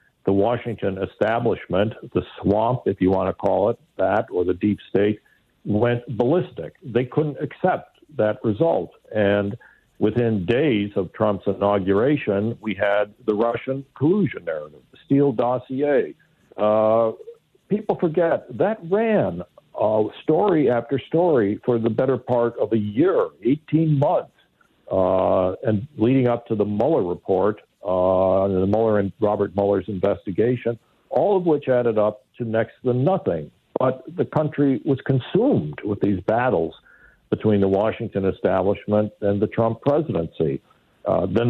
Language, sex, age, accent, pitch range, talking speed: English, male, 60-79, American, 105-135 Hz, 140 wpm